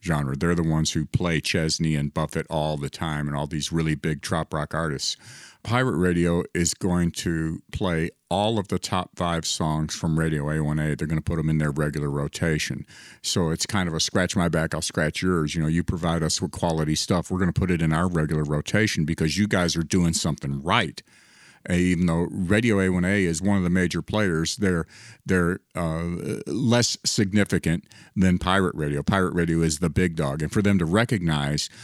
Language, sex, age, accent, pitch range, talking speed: English, male, 50-69, American, 80-90 Hz, 205 wpm